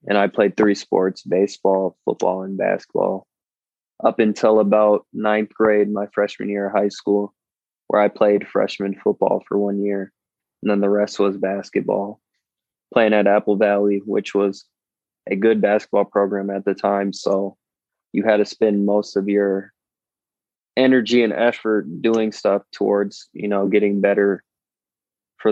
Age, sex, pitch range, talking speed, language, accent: 20-39, male, 100-110 Hz, 155 wpm, English, American